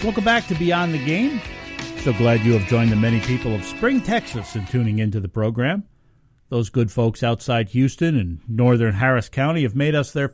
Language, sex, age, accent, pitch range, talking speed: English, male, 50-69, American, 110-145 Hz, 205 wpm